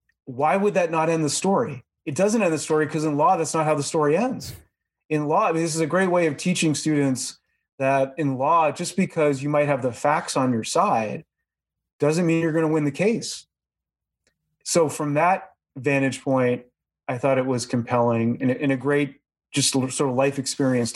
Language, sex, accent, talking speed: English, male, American, 205 wpm